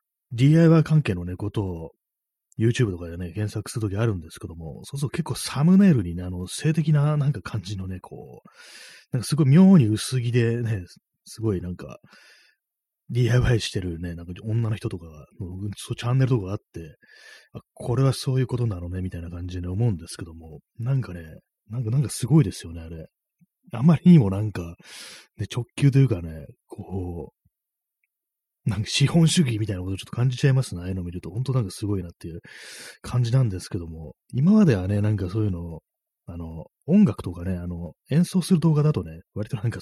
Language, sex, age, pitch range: Japanese, male, 30-49, 90-130 Hz